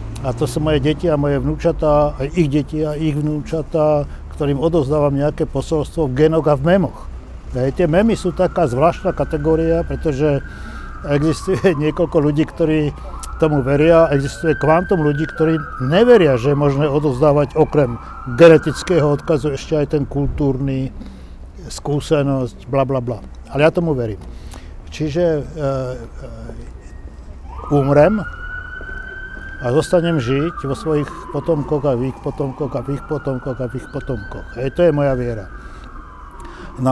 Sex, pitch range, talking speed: male, 135-160 Hz, 140 wpm